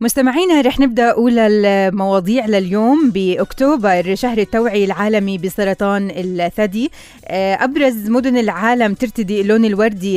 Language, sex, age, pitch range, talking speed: Arabic, female, 20-39, 185-225 Hz, 105 wpm